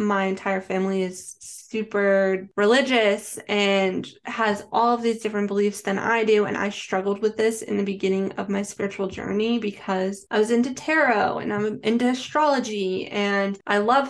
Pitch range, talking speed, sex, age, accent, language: 195-225 Hz, 170 wpm, female, 10-29, American, English